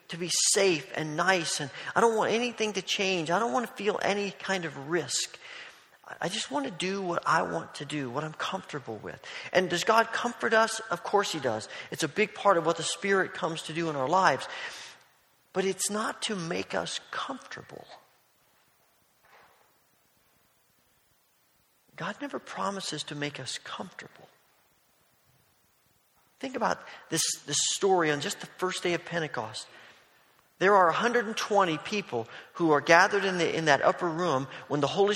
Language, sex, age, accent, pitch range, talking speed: English, male, 40-59, American, 155-210 Hz, 170 wpm